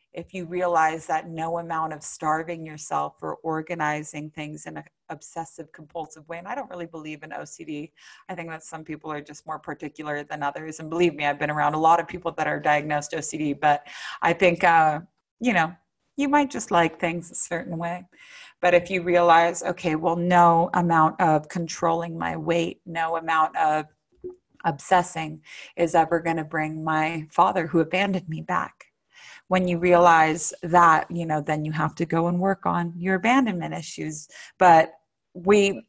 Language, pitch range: English, 155-175 Hz